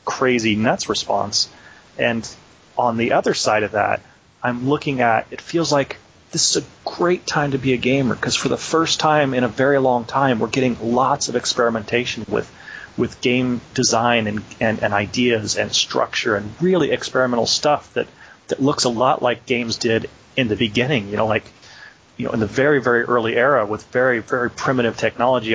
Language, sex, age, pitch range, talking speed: English, male, 30-49, 110-130 Hz, 190 wpm